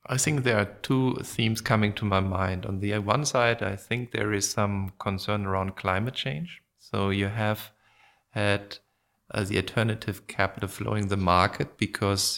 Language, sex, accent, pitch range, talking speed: English, male, German, 95-110 Hz, 170 wpm